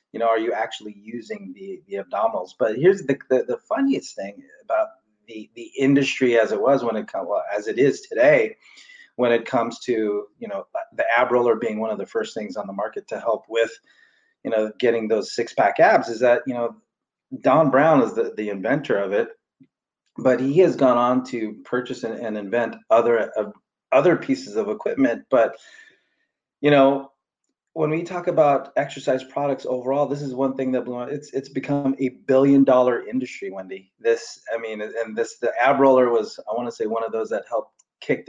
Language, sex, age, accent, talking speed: English, male, 30-49, American, 200 wpm